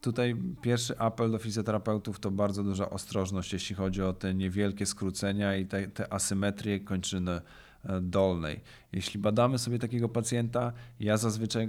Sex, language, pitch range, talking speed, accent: male, Polish, 95-110 Hz, 140 wpm, native